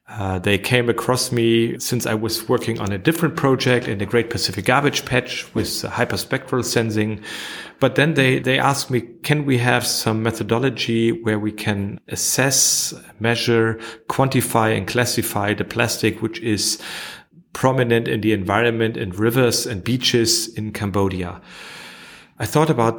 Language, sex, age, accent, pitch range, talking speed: English, male, 40-59, German, 110-125 Hz, 150 wpm